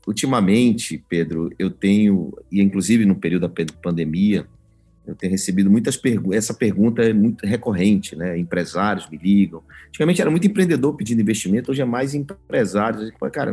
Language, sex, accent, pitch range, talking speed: Portuguese, male, Brazilian, 100-130 Hz, 150 wpm